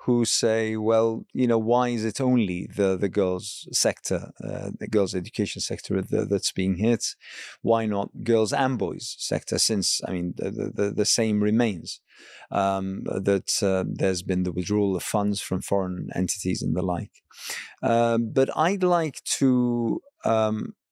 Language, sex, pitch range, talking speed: English, male, 100-125 Hz, 160 wpm